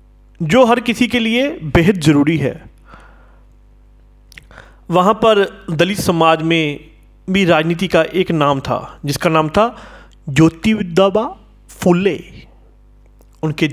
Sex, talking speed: male, 110 wpm